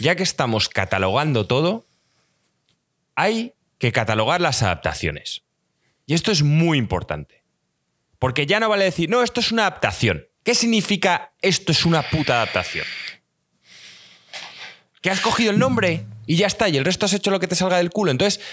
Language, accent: Spanish, Spanish